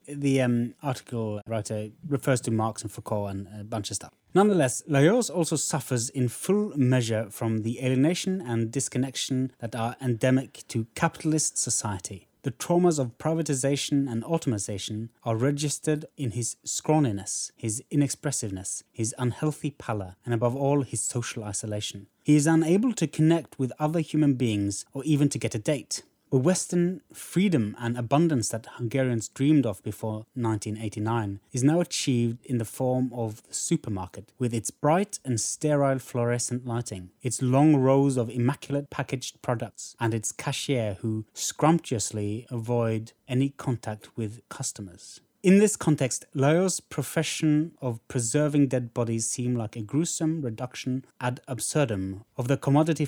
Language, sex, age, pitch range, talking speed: English, male, 30-49, 115-145 Hz, 150 wpm